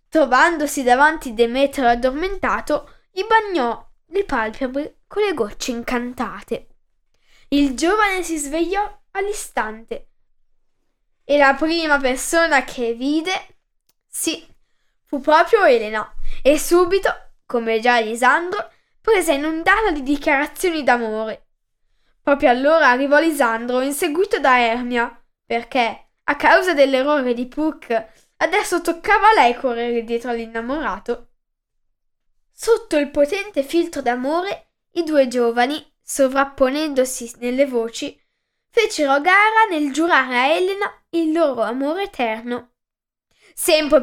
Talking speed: 110 wpm